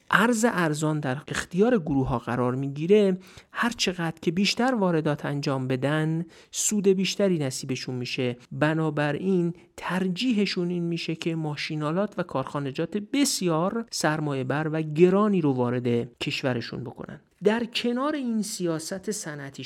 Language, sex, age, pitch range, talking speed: Persian, male, 50-69, 150-195 Hz, 125 wpm